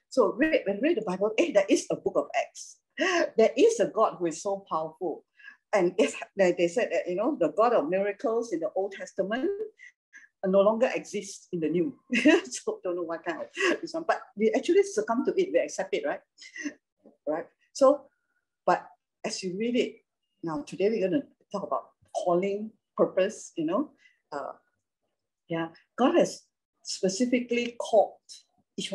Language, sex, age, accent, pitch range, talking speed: English, female, 50-69, Malaysian, 190-300 Hz, 175 wpm